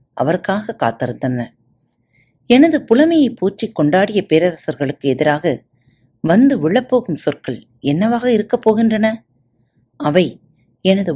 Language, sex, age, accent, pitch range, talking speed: Tamil, female, 30-49, native, 130-205 Hz, 85 wpm